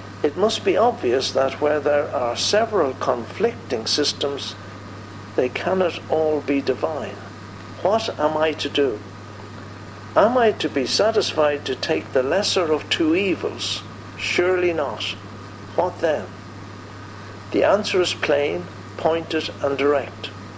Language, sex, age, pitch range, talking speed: English, male, 60-79, 105-150 Hz, 130 wpm